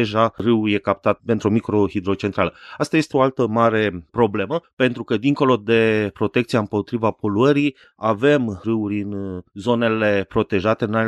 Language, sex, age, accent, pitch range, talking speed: Romanian, male, 30-49, native, 100-115 Hz, 140 wpm